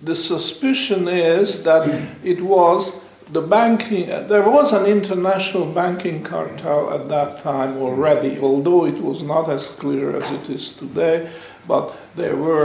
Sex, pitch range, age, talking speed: male, 145-200 Hz, 60-79, 145 wpm